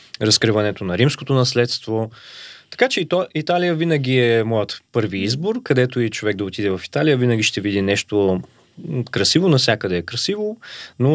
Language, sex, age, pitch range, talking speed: Bulgarian, male, 20-39, 100-125 Hz, 155 wpm